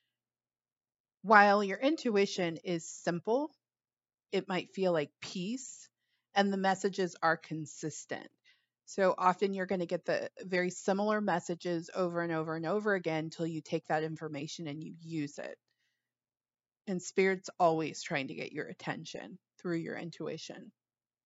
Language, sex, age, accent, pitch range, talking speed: English, female, 30-49, American, 165-200 Hz, 145 wpm